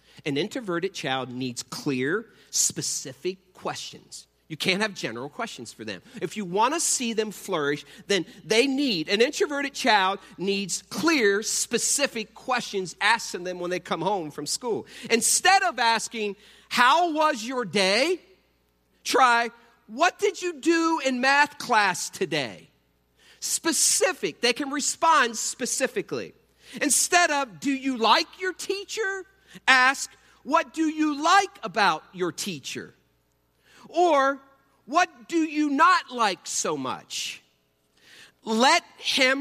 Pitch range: 195-295 Hz